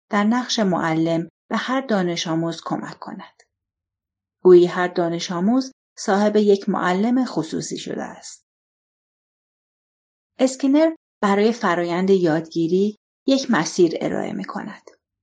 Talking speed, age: 110 wpm, 40-59